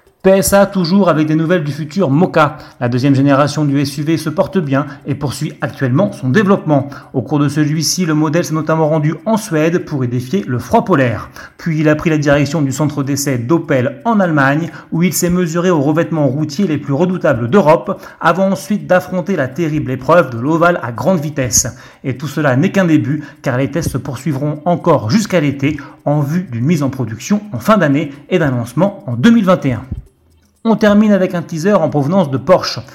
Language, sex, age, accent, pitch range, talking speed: French, male, 30-49, French, 140-180 Hz, 200 wpm